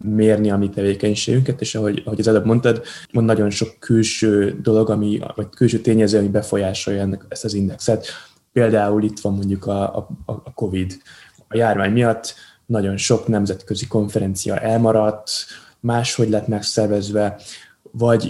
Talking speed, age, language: 140 wpm, 20-39, Hungarian